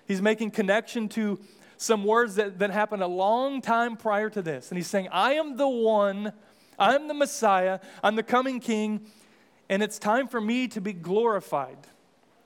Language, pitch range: English, 185-235 Hz